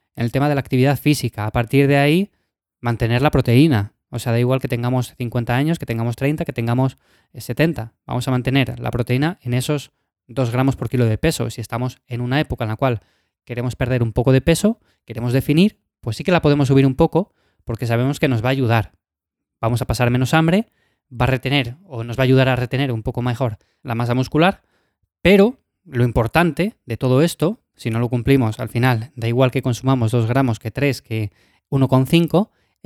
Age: 20-39